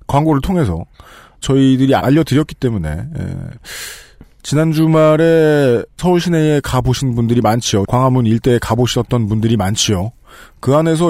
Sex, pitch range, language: male, 110-165 Hz, Korean